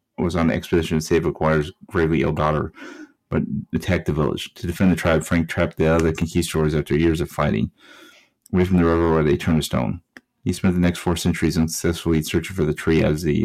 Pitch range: 80-90 Hz